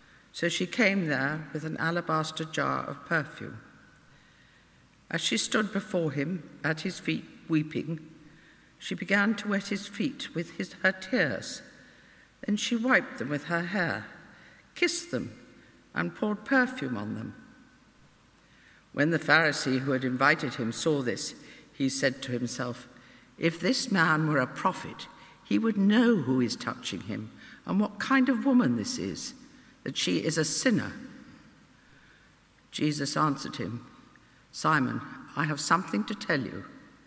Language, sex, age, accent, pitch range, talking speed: English, female, 60-79, British, 135-180 Hz, 145 wpm